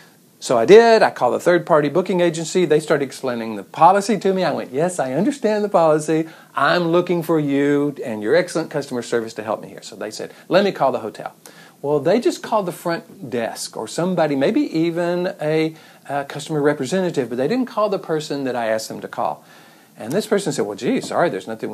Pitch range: 130-185 Hz